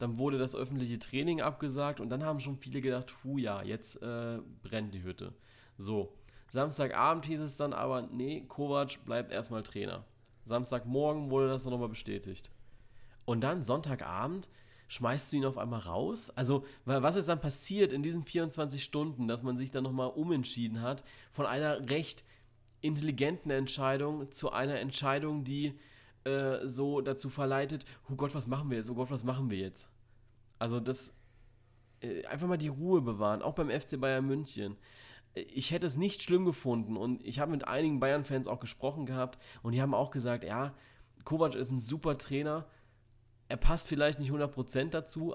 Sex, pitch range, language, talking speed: male, 120-145 Hz, German, 170 wpm